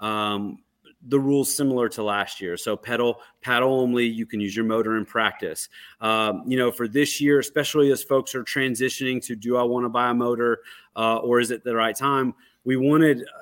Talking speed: 205 wpm